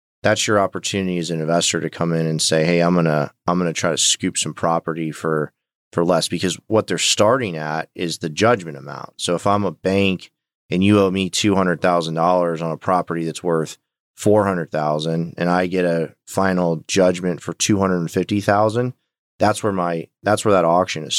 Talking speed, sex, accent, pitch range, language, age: 190 wpm, male, American, 85-95 Hz, English, 30-49